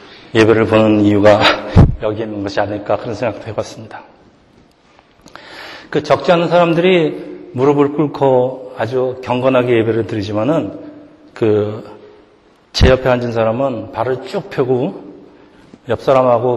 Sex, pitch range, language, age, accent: male, 120-150 Hz, Korean, 40-59, native